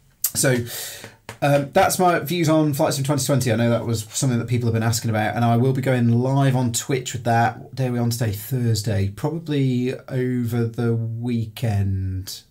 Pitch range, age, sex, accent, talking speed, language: 105-130 Hz, 30-49, male, British, 195 wpm, English